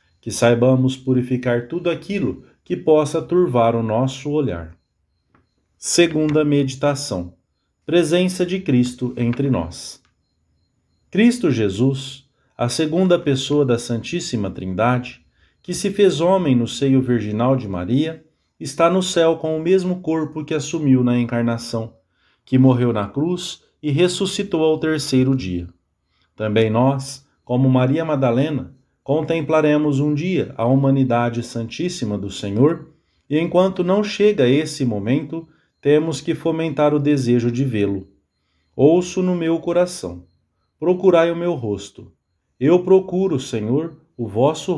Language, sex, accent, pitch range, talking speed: English, male, Brazilian, 120-160 Hz, 125 wpm